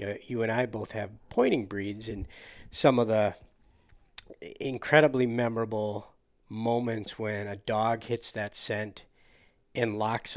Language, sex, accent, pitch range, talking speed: English, male, American, 110-135 Hz, 140 wpm